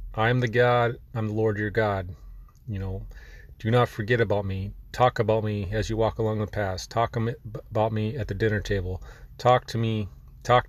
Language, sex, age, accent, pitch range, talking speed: English, male, 30-49, American, 105-115 Hz, 195 wpm